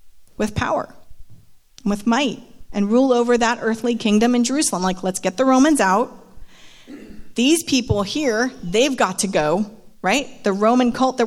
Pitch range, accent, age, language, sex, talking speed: 200-230 Hz, American, 30-49, English, female, 160 wpm